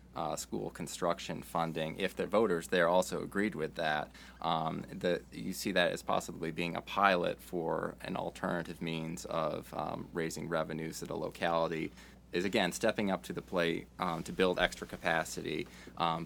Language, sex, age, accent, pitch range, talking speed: English, male, 20-39, American, 85-95 Hz, 170 wpm